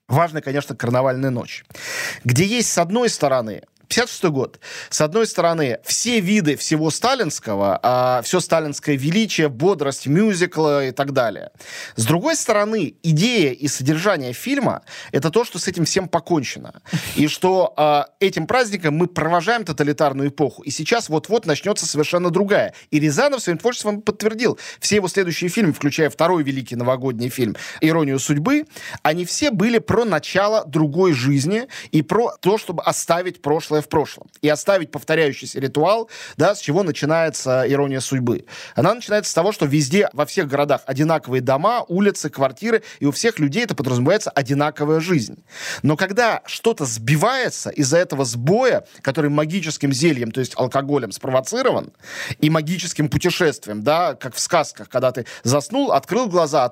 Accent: native